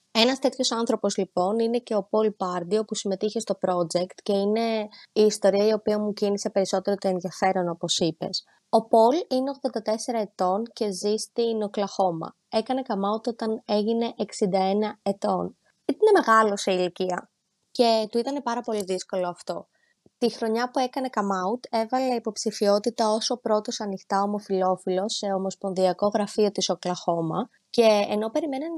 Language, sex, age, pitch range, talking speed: Greek, female, 20-39, 195-230 Hz, 155 wpm